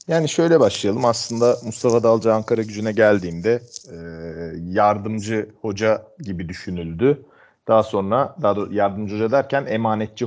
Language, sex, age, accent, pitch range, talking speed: Turkish, male, 40-59, native, 100-120 Hz, 125 wpm